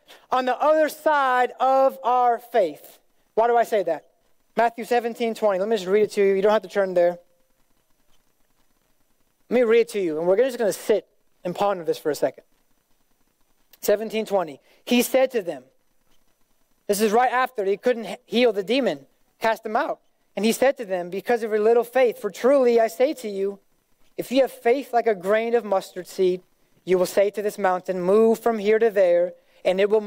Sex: male